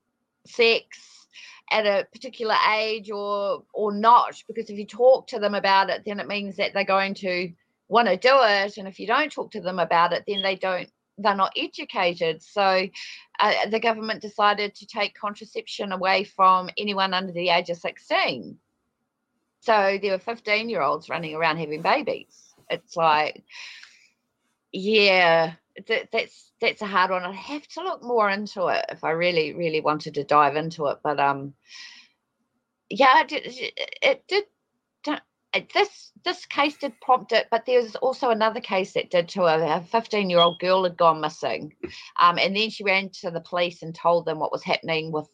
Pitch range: 175-255 Hz